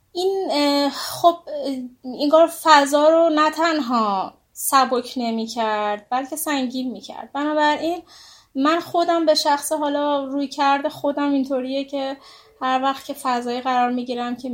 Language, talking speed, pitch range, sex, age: Persian, 130 wpm, 240-305 Hz, female, 20-39